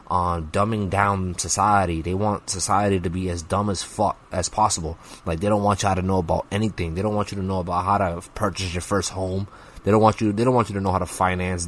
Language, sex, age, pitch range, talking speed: English, male, 20-39, 90-110 Hz, 260 wpm